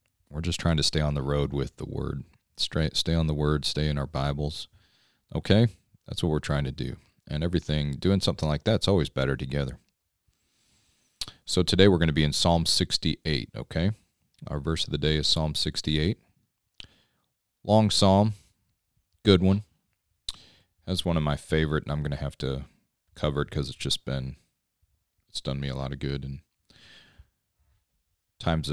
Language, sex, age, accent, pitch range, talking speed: English, male, 30-49, American, 70-90 Hz, 175 wpm